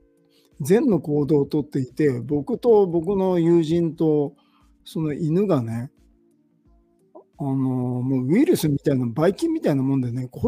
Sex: male